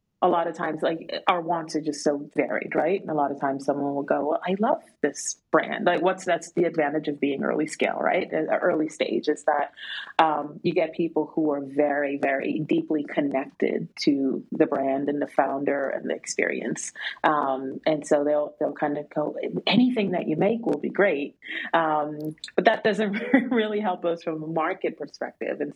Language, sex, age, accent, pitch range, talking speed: English, female, 30-49, American, 140-165 Hz, 195 wpm